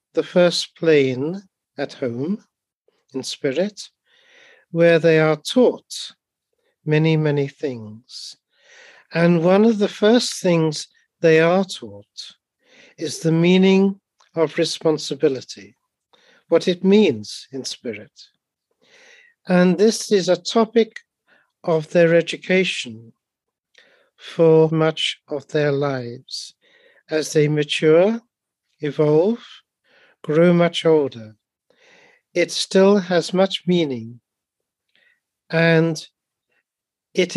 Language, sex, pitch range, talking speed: English, male, 155-210 Hz, 95 wpm